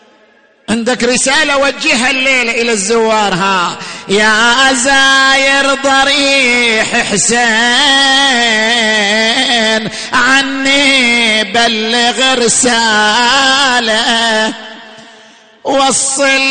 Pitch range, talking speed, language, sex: 230-275 Hz, 55 wpm, Arabic, male